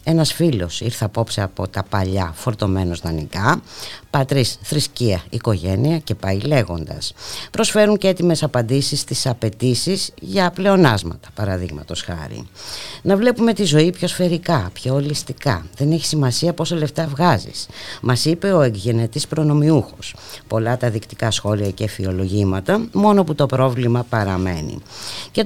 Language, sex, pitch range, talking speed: Greek, female, 100-145 Hz, 130 wpm